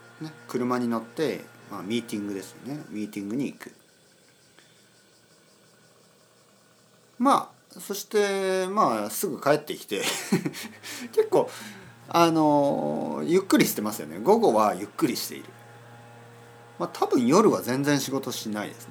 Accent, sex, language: native, male, Japanese